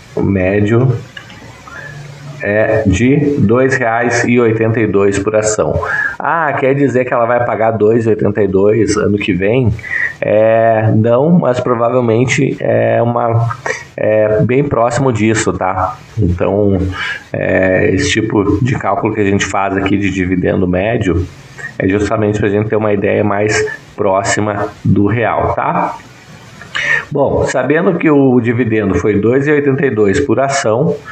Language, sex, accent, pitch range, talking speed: Portuguese, male, Brazilian, 105-130 Hz, 130 wpm